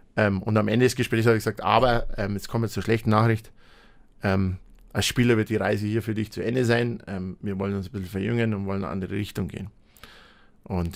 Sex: male